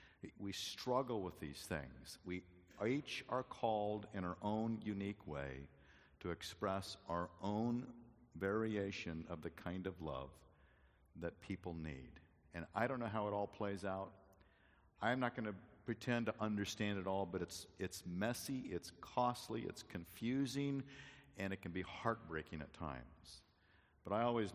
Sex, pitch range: male, 85-115 Hz